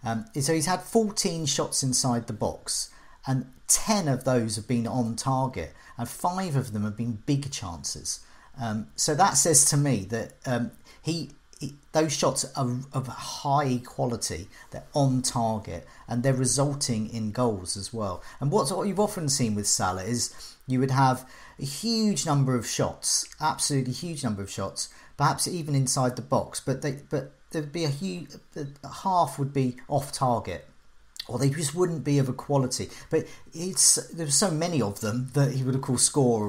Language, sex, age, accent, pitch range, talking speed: English, male, 40-59, British, 115-155 Hz, 180 wpm